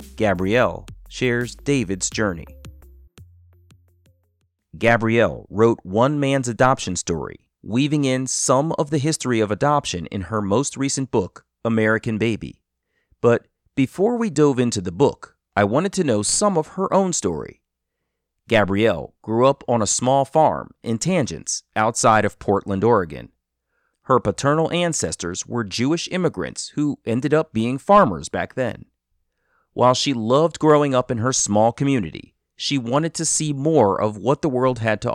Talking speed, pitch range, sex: 150 wpm, 105-145 Hz, male